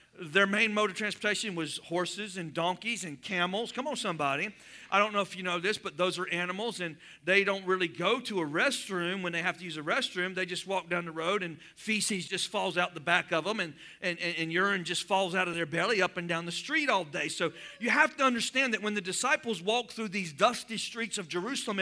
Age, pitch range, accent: 50-69, 180-250 Hz, American